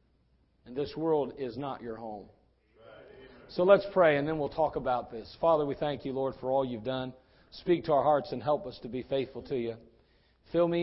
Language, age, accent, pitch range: English, 40-59, American, 125-200 Hz